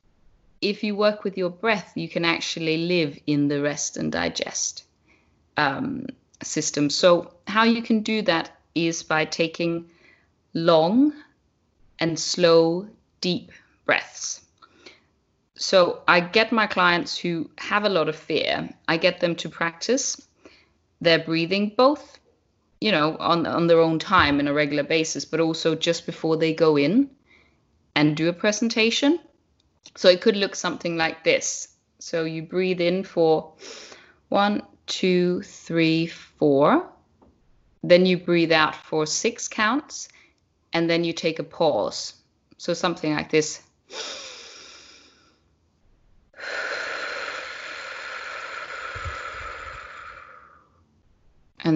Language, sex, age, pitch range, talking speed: English, female, 30-49, 165-240 Hz, 125 wpm